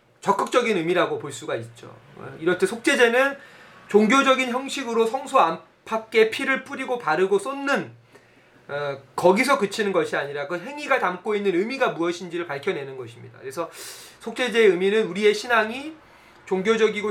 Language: Korean